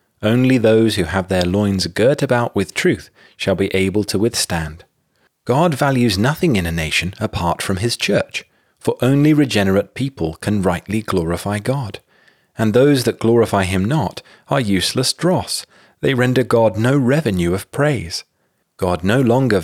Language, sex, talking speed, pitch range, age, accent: English, male, 160 wpm, 95-120 Hz, 40-59, British